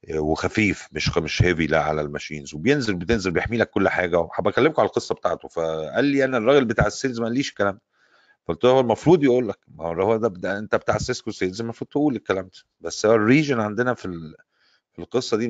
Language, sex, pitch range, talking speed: Arabic, male, 80-120 Hz, 185 wpm